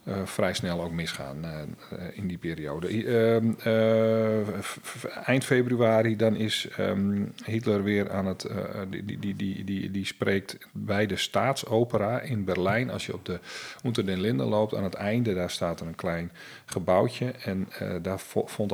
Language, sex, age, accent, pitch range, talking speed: Dutch, male, 40-59, Dutch, 90-105 Hz, 160 wpm